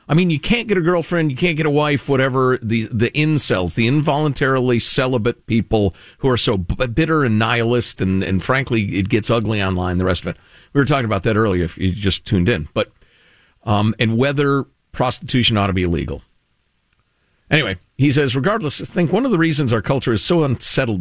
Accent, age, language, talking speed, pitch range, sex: American, 50-69, English, 205 wpm, 105-150 Hz, male